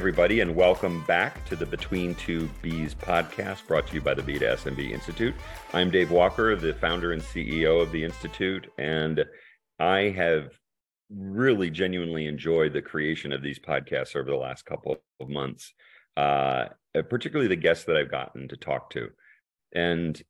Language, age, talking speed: English, 40-59, 170 wpm